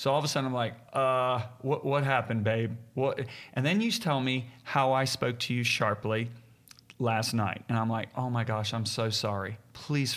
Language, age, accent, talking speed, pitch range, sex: English, 40-59, American, 205 wpm, 115-135 Hz, male